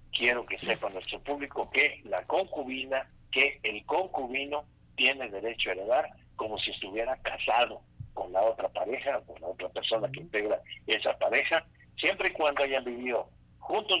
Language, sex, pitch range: Spanish, male, 115-145 Hz